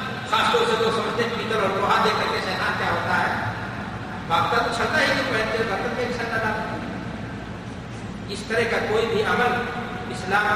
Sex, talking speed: male, 120 wpm